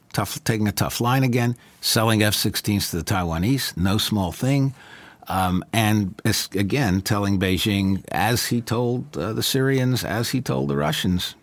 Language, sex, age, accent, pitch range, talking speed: English, male, 60-79, American, 90-110 Hz, 155 wpm